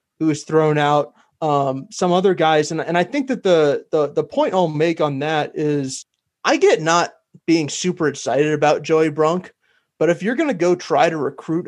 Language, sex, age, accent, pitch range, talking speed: English, male, 20-39, American, 140-160 Hz, 205 wpm